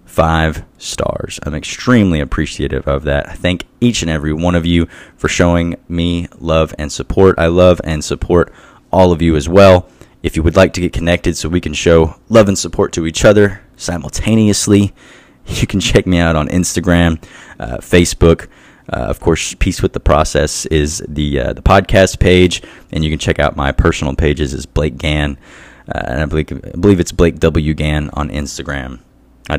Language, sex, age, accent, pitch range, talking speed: English, male, 20-39, American, 80-95 Hz, 190 wpm